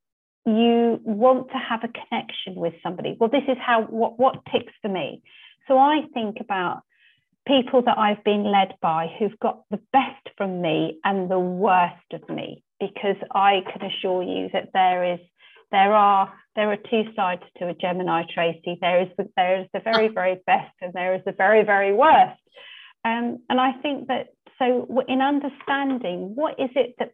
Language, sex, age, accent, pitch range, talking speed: English, female, 40-59, British, 185-225 Hz, 185 wpm